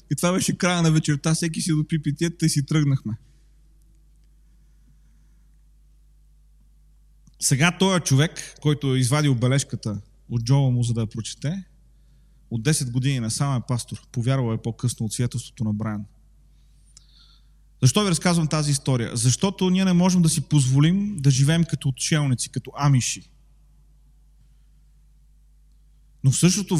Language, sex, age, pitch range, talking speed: Bulgarian, male, 30-49, 130-160 Hz, 135 wpm